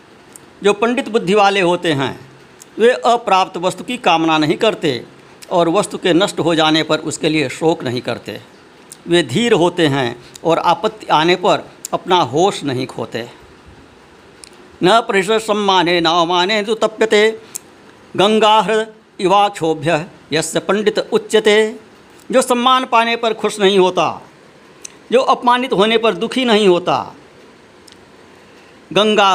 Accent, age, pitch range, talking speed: native, 60-79, 170-215 Hz, 130 wpm